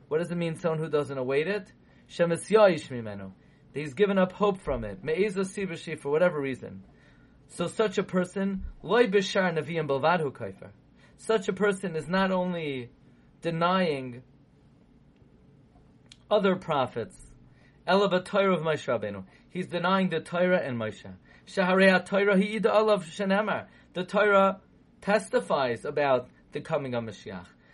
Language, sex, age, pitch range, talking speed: English, male, 30-49, 155-200 Hz, 100 wpm